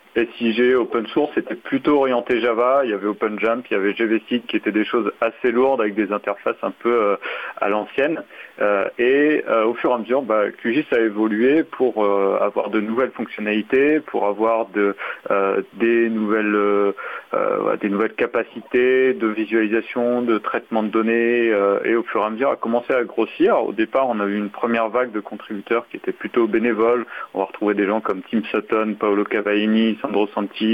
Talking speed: 195 wpm